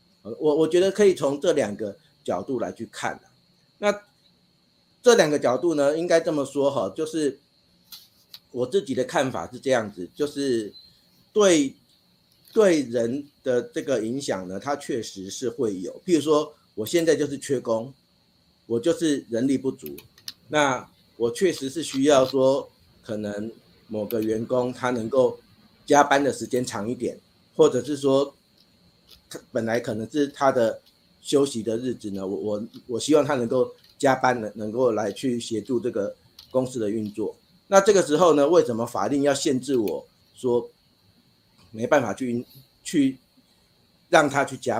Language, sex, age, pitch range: Chinese, male, 50-69, 115-155 Hz